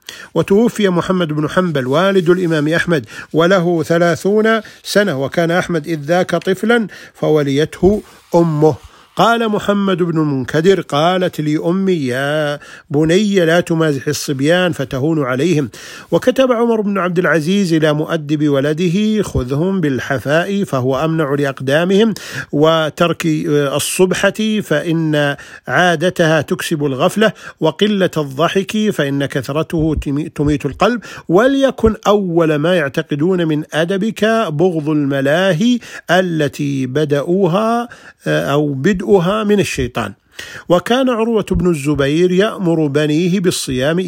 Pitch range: 150-190 Hz